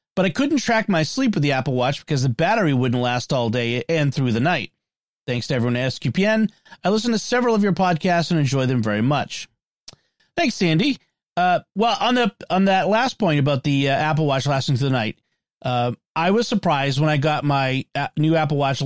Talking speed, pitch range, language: 215 wpm, 120-160 Hz, English